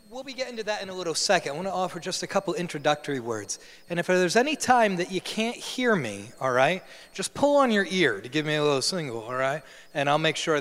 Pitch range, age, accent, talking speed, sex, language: 155-240 Hz, 30-49, American, 265 wpm, male, English